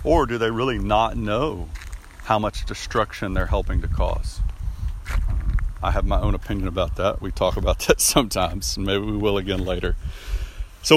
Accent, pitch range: American, 85-110 Hz